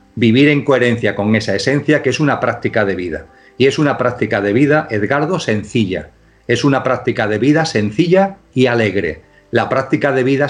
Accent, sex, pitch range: Spanish, male, 110-140 Hz